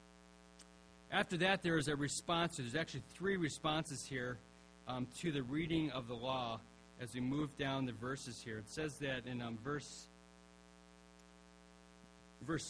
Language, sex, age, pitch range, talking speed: English, male, 40-59, 110-160 Hz, 150 wpm